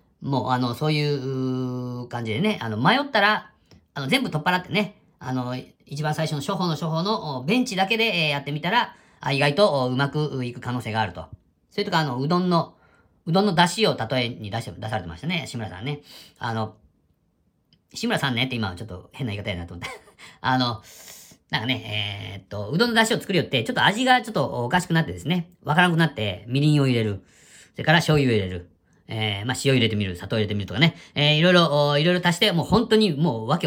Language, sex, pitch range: Japanese, female, 110-175 Hz